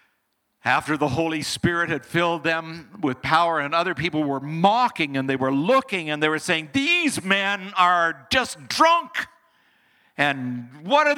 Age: 60-79